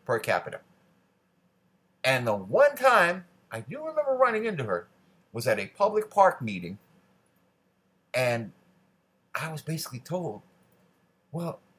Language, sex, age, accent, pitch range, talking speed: English, male, 60-79, American, 115-175 Hz, 120 wpm